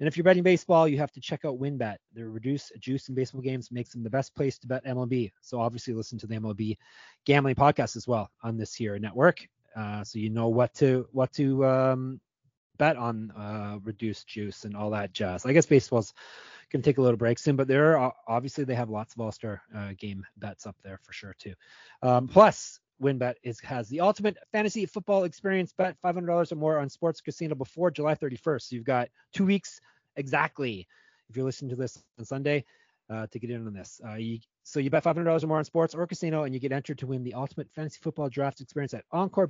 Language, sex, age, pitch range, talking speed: English, male, 30-49, 115-155 Hz, 225 wpm